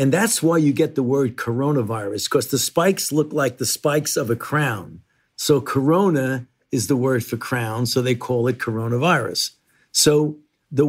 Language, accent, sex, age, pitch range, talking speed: English, American, male, 50-69, 120-155 Hz, 175 wpm